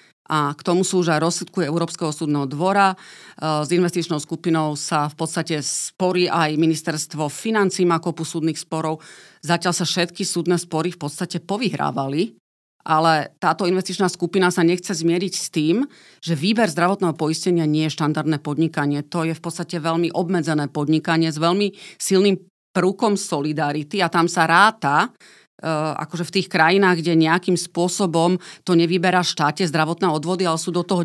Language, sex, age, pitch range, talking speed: Slovak, female, 30-49, 155-180 Hz, 150 wpm